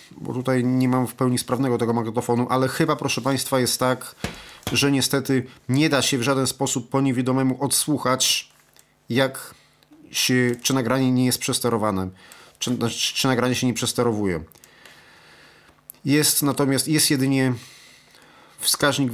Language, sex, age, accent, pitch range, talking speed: Polish, male, 40-59, native, 115-130 Hz, 140 wpm